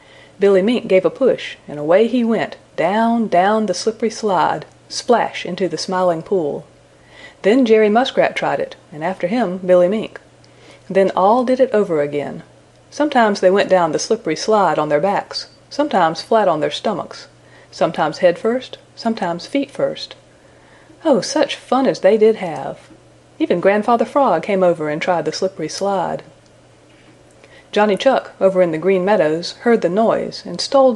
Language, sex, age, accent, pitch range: Japanese, female, 40-59, American, 170-230 Hz